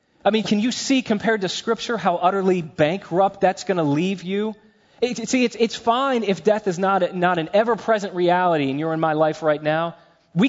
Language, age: English, 30-49